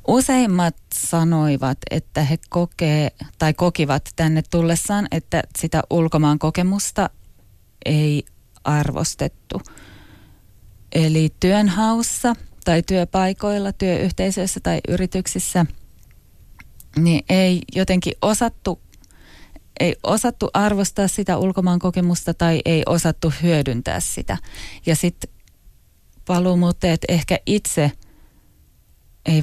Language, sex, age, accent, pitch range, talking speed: Finnish, female, 20-39, native, 145-185 Hz, 85 wpm